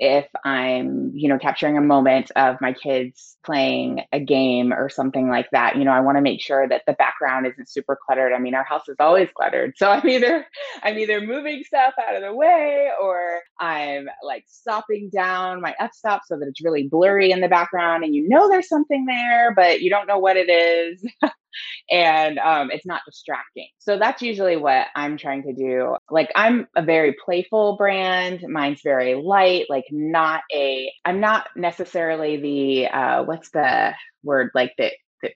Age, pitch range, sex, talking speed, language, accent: 20-39, 140-210 Hz, female, 190 wpm, English, American